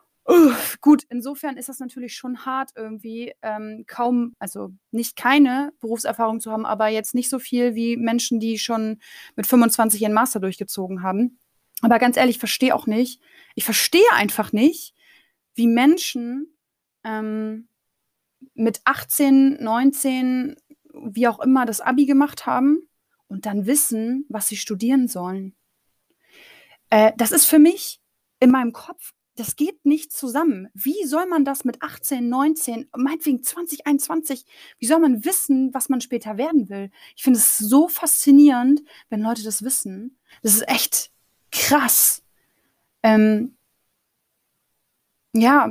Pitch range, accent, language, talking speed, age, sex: 225-280 Hz, German, German, 140 wpm, 20-39, female